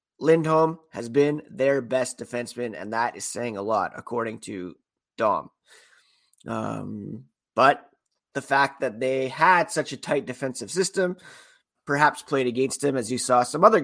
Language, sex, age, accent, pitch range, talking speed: English, male, 30-49, American, 125-165 Hz, 155 wpm